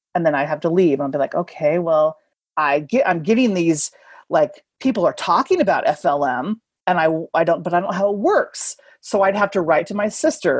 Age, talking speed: 30-49, 230 wpm